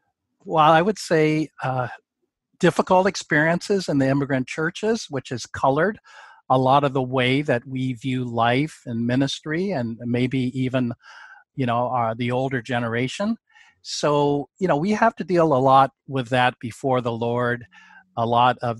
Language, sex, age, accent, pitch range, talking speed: English, male, 50-69, American, 120-150 Hz, 165 wpm